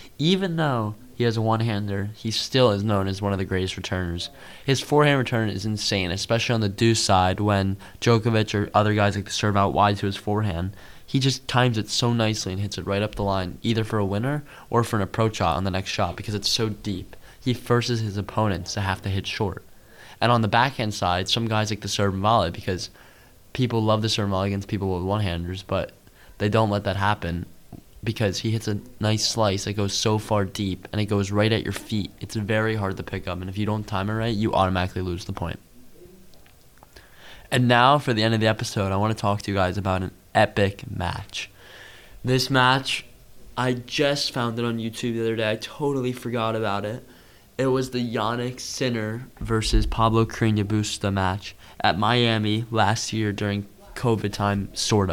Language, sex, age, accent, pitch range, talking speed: English, male, 20-39, American, 100-115 Hz, 215 wpm